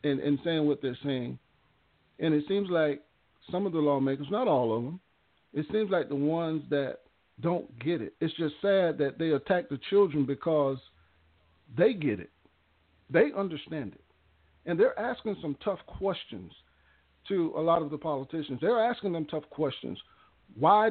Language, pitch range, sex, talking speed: English, 140-185 Hz, male, 170 wpm